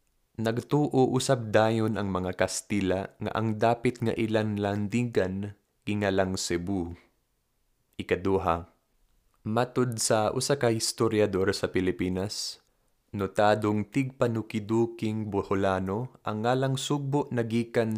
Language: Filipino